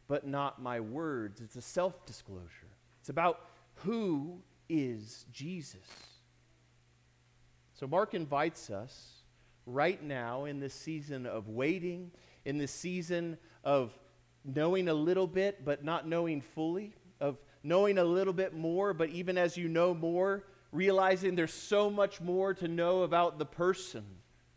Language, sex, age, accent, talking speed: English, male, 40-59, American, 140 wpm